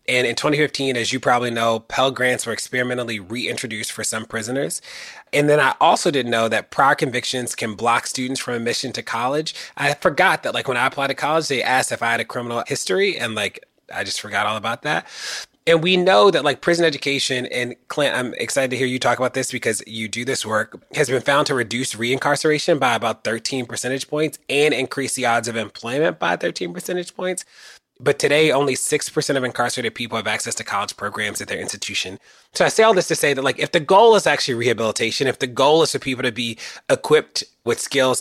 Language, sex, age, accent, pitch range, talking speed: English, male, 30-49, American, 115-140 Hz, 220 wpm